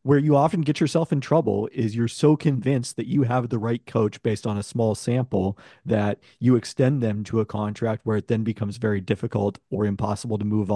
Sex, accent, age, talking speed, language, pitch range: male, American, 40-59, 220 wpm, English, 110-135 Hz